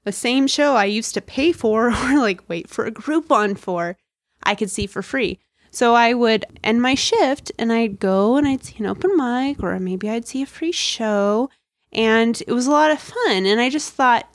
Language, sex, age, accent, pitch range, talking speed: English, female, 20-39, American, 190-245 Hz, 220 wpm